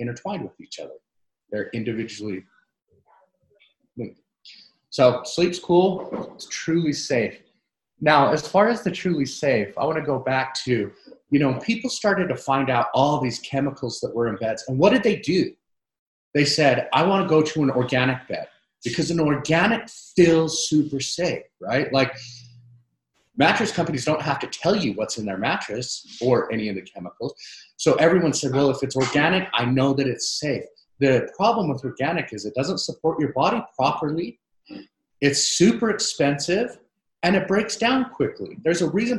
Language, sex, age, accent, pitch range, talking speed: English, male, 30-49, American, 125-180 Hz, 170 wpm